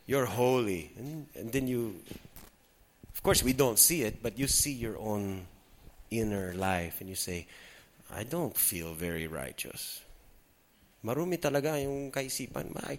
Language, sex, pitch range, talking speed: English, male, 105-155 Hz, 145 wpm